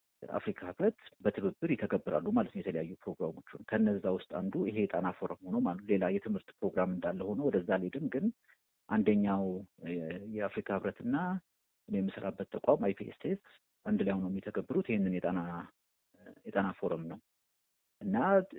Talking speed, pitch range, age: 115 wpm, 95-140 Hz, 50-69